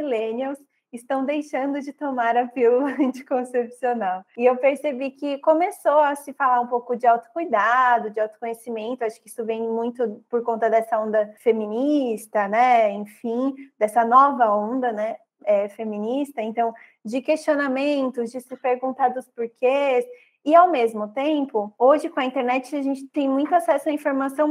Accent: Brazilian